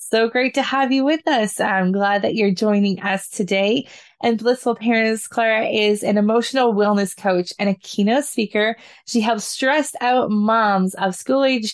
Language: English